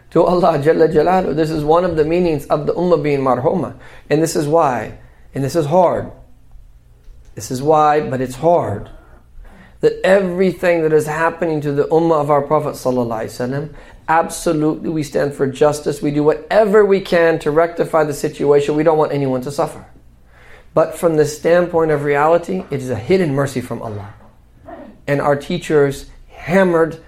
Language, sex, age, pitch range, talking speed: English, male, 30-49, 140-170 Hz, 175 wpm